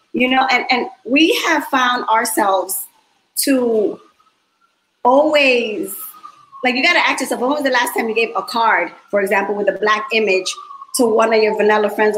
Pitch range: 230-305 Hz